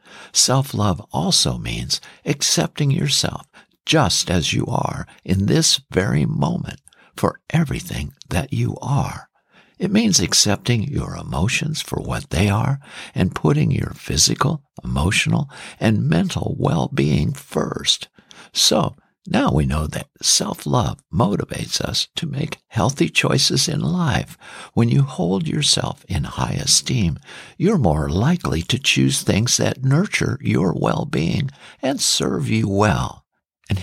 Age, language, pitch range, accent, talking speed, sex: 60-79, English, 105-160 Hz, American, 130 wpm, male